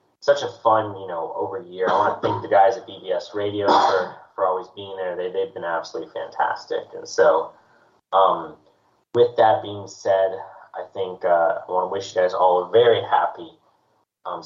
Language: English